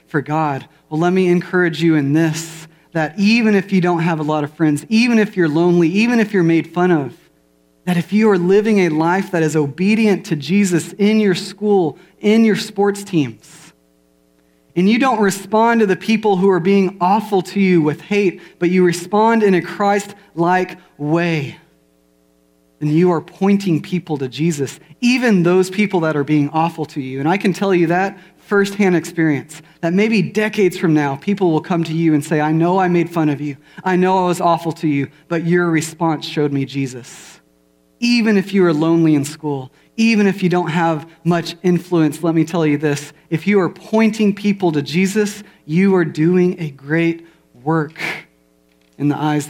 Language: English